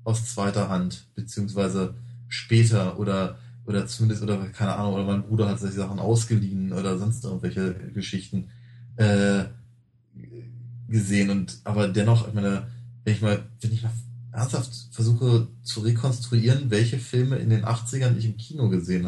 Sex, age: male, 20-39